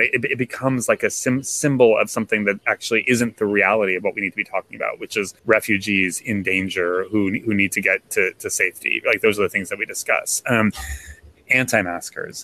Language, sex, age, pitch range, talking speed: English, male, 30-49, 105-130 Hz, 210 wpm